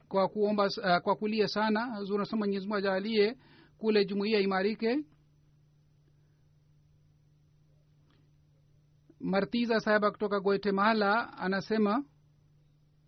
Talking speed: 80 wpm